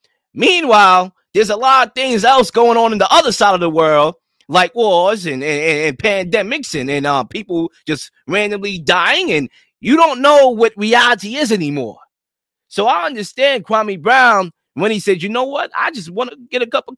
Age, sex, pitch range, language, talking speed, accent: 20-39, male, 200-265 Hz, English, 200 wpm, American